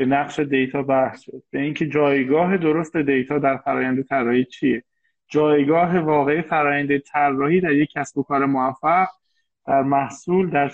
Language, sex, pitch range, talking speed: Persian, male, 140-175 Hz, 140 wpm